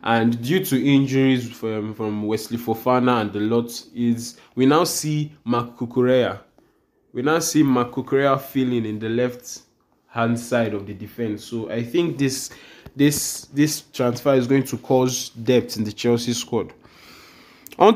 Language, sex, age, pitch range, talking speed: English, male, 20-39, 120-155 Hz, 160 wpm